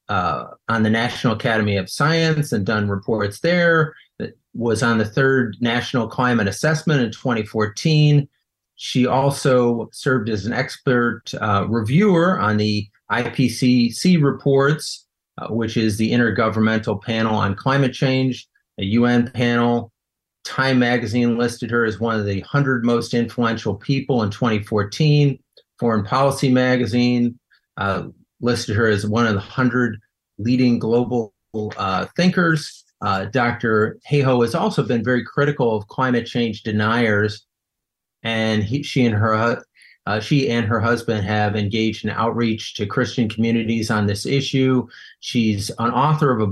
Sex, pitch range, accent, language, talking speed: male, 110-130 Hz, American, English, 145 wpm